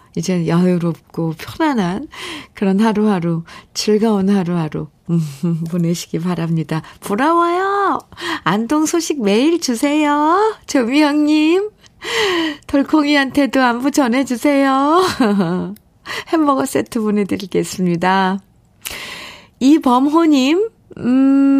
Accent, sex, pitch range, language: native, female, 175-275 Hz, Korean